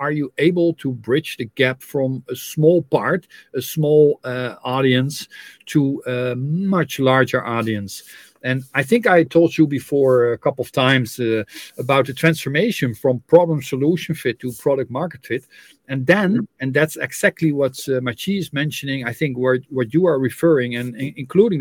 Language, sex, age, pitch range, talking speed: English, male, 50-69, 130-165 Hz, 170 wpm